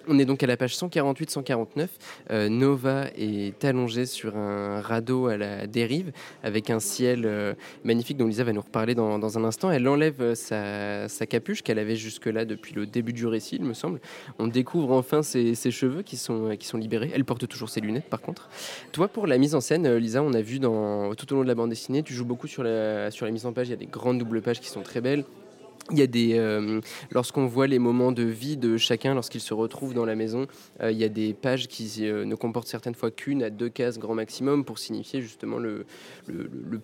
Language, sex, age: French, male, 20-39